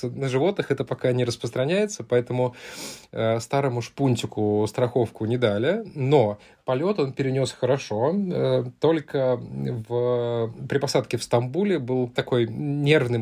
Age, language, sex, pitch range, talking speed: 20-39, Russian, male, 115-140 Hz, 125 wpm